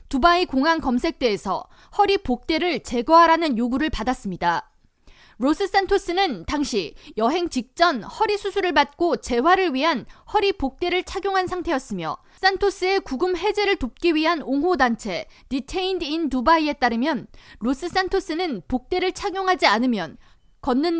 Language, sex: Korean, female